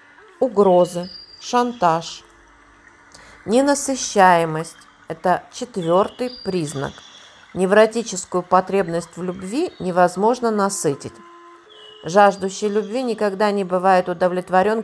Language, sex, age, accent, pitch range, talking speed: Russian, female, 40-59, native, 170-235 Hz, 75 wpm